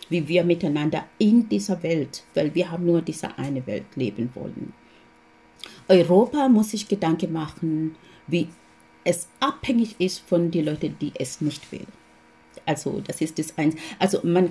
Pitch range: 150-185 Hz